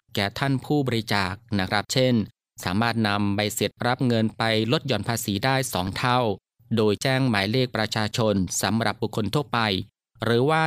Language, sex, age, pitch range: Thai, male, 20-39, 105-135 Hz